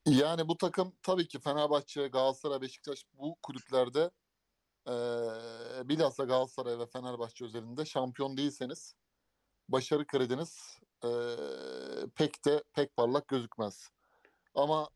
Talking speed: 110 wpm